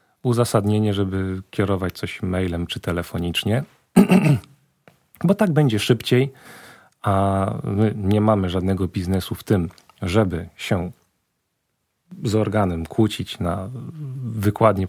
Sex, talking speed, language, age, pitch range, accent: male, 110 wpm, Polish, 40-59, 95-120 Hz, native